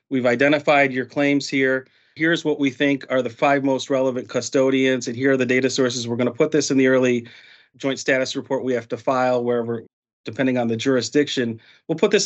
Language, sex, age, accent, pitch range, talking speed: English, male, 40-59, American, 125-150 Hz, 210 wpm